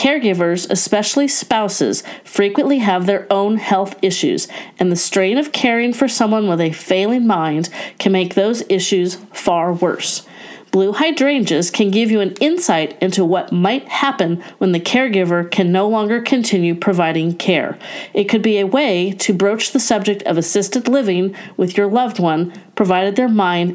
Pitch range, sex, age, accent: 180-230 Hz, female, 40-59, American